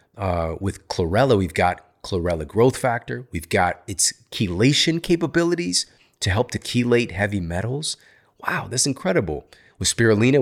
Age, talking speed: 30-49, 140 wpm